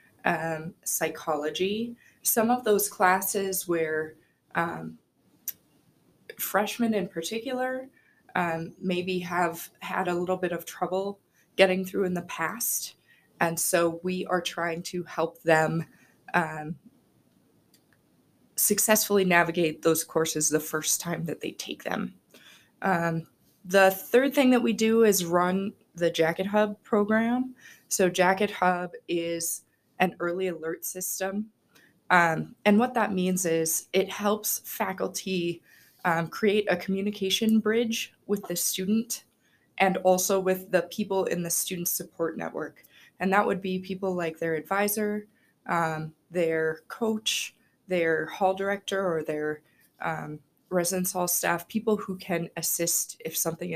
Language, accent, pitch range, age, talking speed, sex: English, American, 165-200 Hz, 20-39, 135 wpm, female